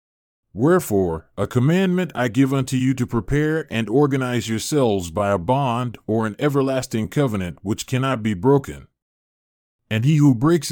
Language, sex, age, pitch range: English, male, 40-59, 110-140 Hz